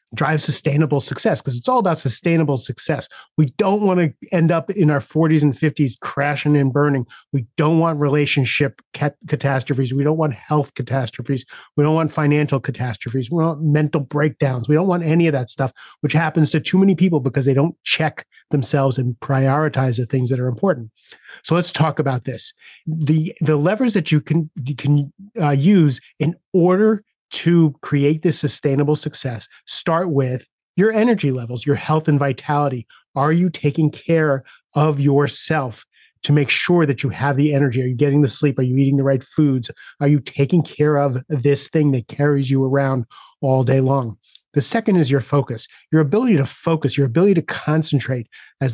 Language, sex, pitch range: English, male, 135-155 Hz